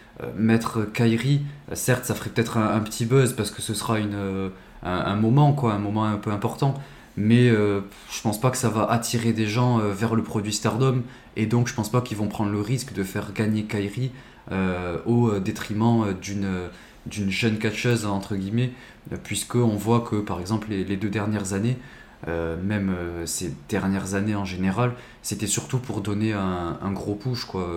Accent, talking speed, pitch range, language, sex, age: French, 190 wpm, 95-115 Hz, French, male, 20-39